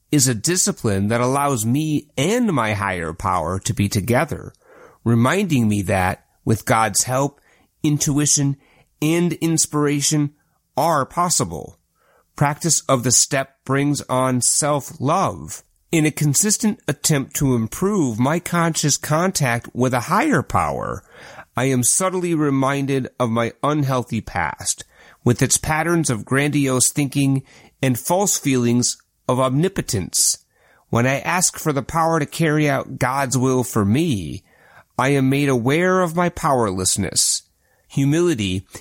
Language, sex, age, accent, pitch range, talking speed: English, male, 30-49, American, 120-155 Hz, 130 wpm